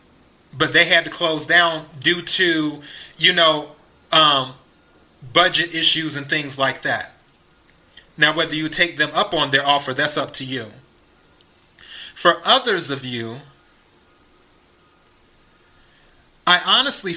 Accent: American